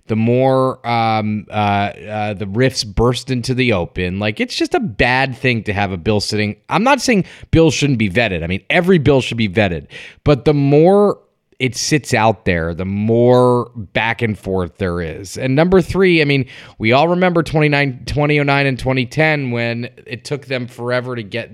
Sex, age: male, 30-49